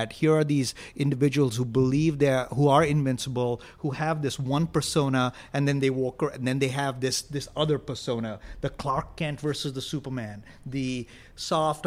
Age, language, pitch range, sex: 30-49, English, 125-155 Hz, male